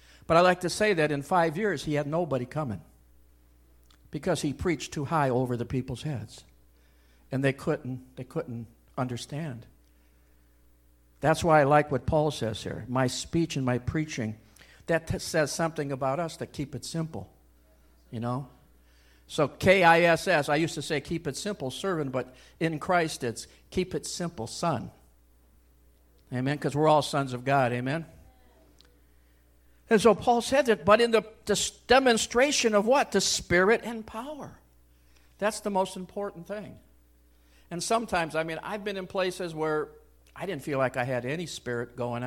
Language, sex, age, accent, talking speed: English, male, 60-79, American, 165 wpm